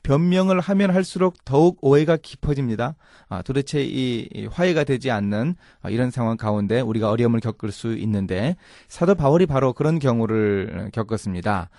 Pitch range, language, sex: 110-165 Hz, Korean, male